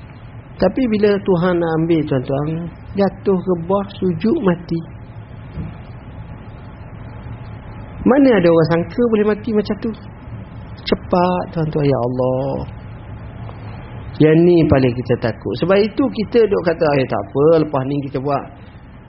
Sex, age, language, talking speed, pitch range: male, 40-59, Malay, 125 wpm, 120-180 Hz